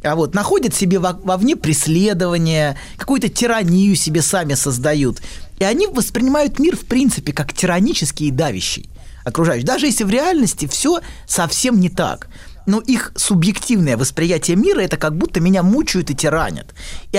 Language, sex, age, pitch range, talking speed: Russian, male, 20-39, 140-205 Hz, 155 wpm